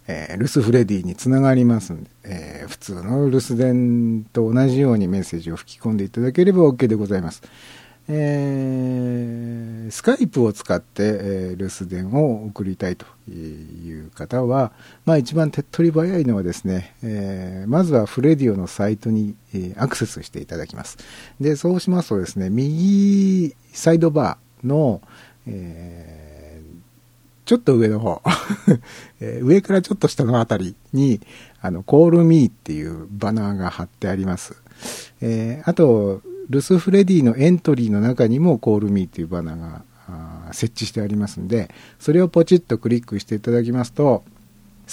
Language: Japanese